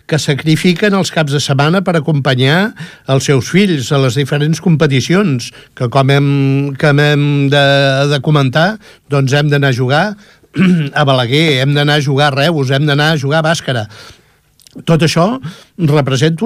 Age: 60-79